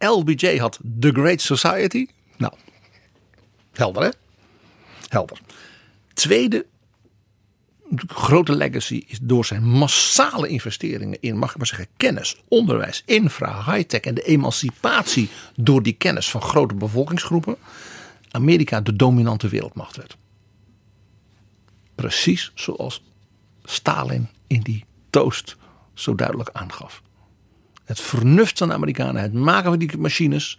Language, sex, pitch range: Dutch, male, 105-155 Hz